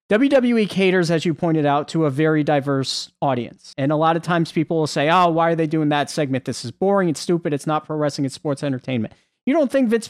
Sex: male